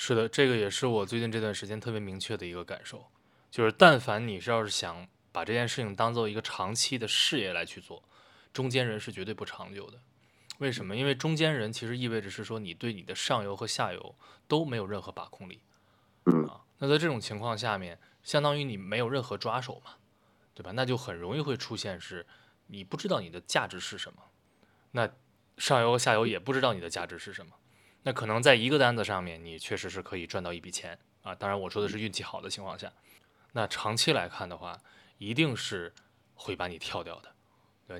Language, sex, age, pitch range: Chinese, male, 20-39, 95-125 Hz